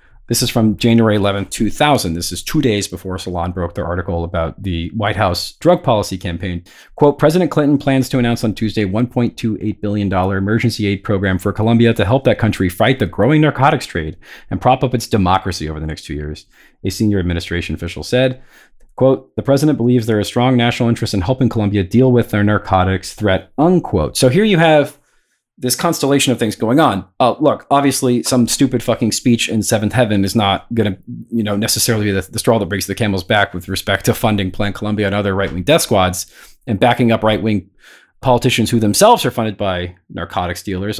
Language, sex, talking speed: English, male, 205 wpm